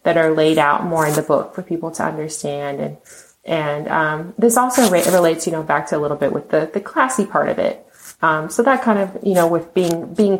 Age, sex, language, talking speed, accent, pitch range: 20-39, female, English, 250 wpm, American, 155-190 Hz